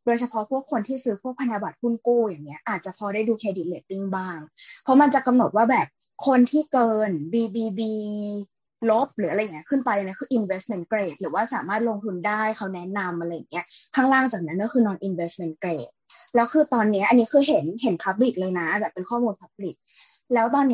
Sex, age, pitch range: female, 20-39, 200-255 Hz